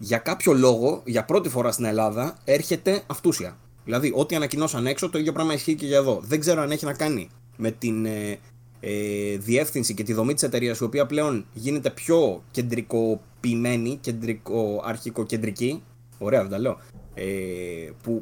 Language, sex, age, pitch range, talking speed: Greek, male, 20-39, 115-140 Hz, 160 wpm